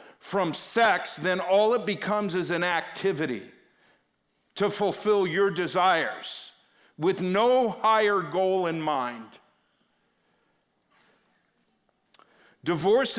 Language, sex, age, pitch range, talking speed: English, male, 50-69, 175-210 Hz, 90 wpm